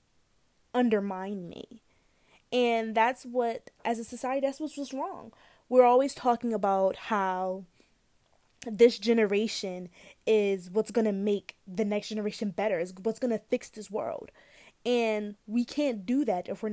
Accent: American